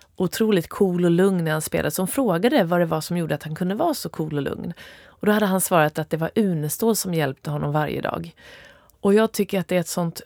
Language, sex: Swedish, female